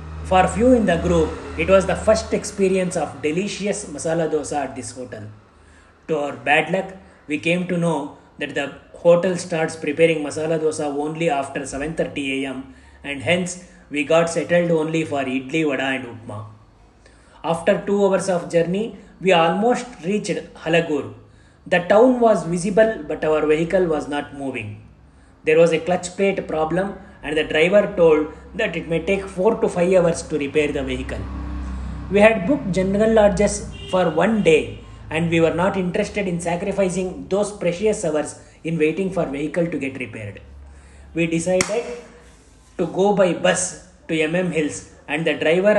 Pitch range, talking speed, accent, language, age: 145-185 Hz, 165 wpm, native, Kannada, 30-49